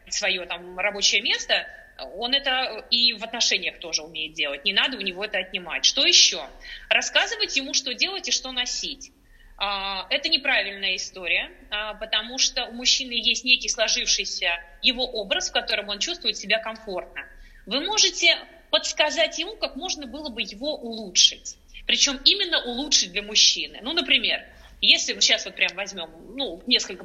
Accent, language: native, Russian